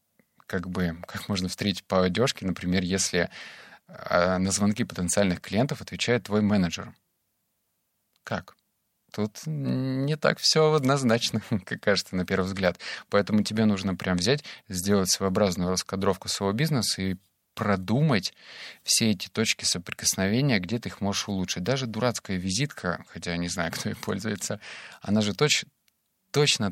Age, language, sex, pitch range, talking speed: 20-39, Russian, male, 95-110 Hz, 140 wpm